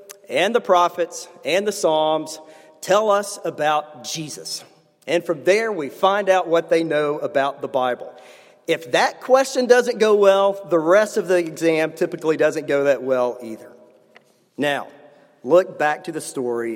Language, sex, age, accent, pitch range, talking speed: English, male, 50-69, American, 145-195 Hz, 160 wpm